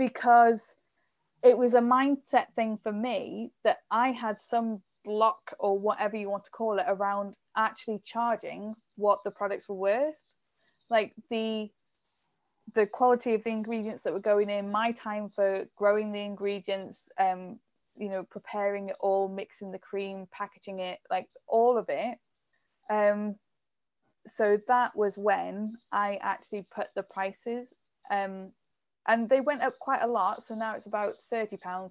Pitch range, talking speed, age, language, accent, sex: 195-230 Hz, 160 wpm, 10-29, English, British, female